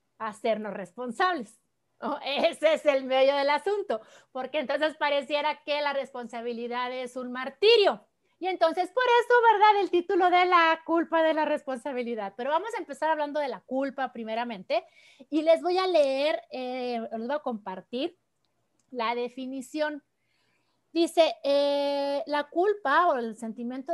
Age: 30-49